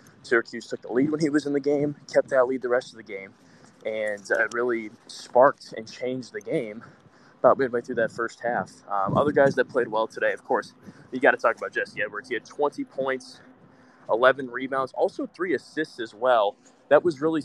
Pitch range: 120-135 Hz